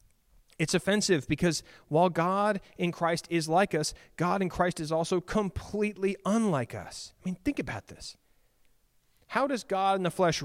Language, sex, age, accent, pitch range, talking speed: English, male, 30-49, American, 130-185 Hz, 165 wpm